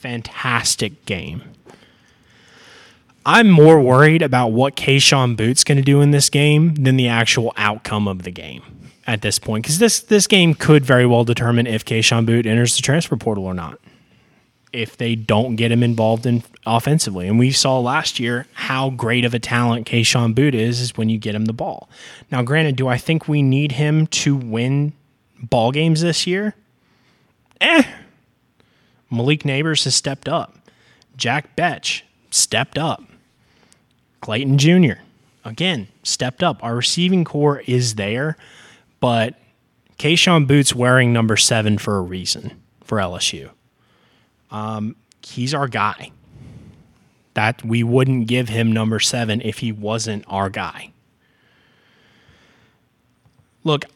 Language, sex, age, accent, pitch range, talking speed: English, male, 20-39, American, 115-145 Hz, 145 wpm